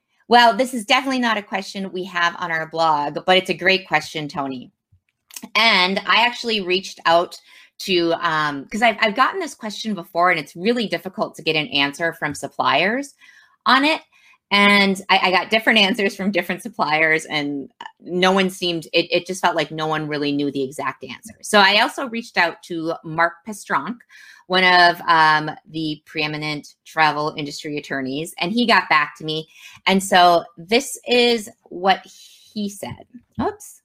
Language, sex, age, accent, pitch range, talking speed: English, female, 30-49, American, 155-205 Hz, 175 wpm